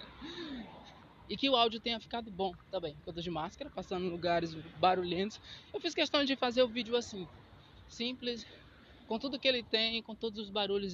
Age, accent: 20-39, Brazilian